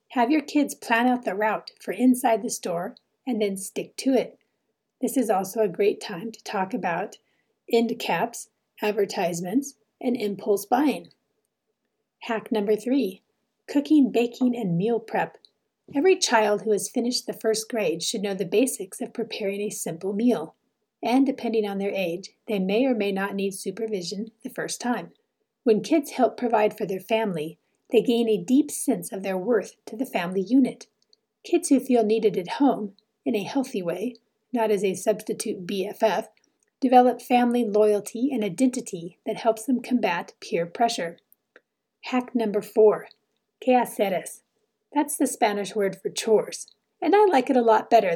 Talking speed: 165 wpm